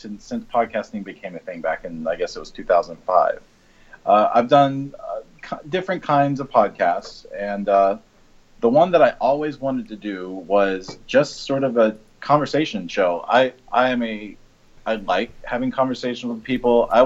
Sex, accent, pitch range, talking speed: male, American, 100-130 Hz, 175 wpm